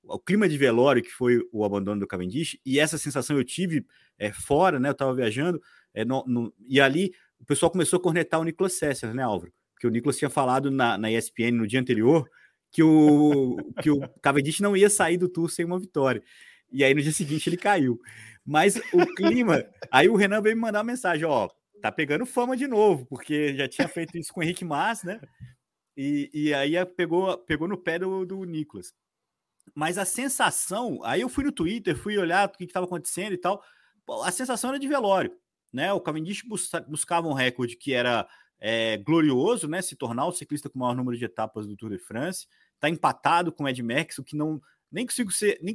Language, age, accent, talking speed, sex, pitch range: Portuguese, 30-49, Brazilian, 215 wpm, male, 130-185 Hz